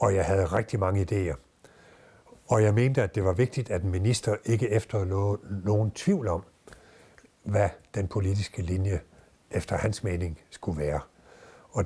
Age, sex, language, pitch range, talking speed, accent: 60-79, male, Danish, 95-125 Hz, 155 wpm, native